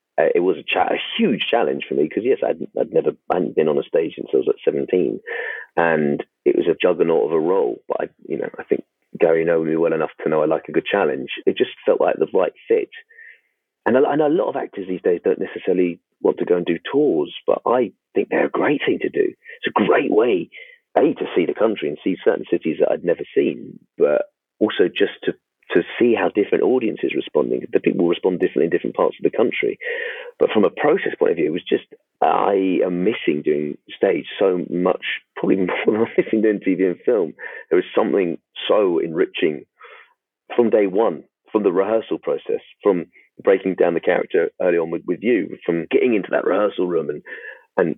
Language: English